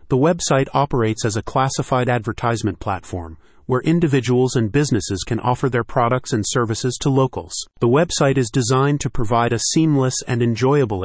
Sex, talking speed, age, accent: male, 165 wpm, 30-49, American